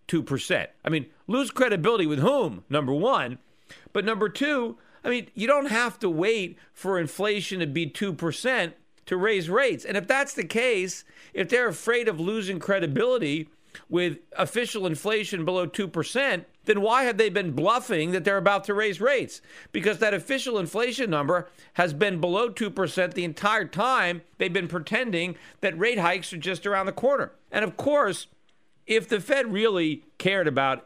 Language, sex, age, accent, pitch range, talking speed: English, male, 50-69, American, 160-220 Hz, 165 wpm